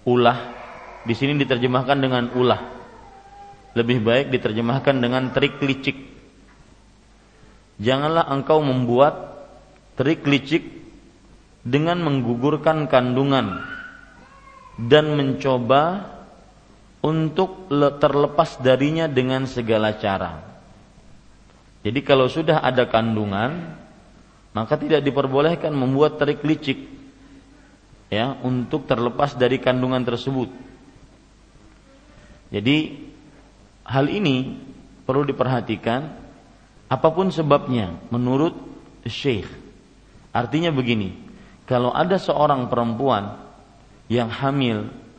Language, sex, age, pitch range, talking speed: Malay, male, 40-59, 115-145 Hz, 80 wpm